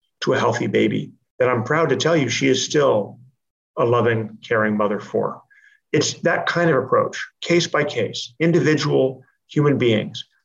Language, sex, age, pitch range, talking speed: English, male, 40-59, 120-155 Hz, 165 wpm